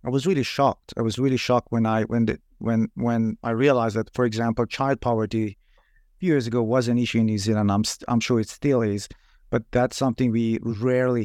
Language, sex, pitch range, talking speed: English, male, 110-125 Hz, 225 wpm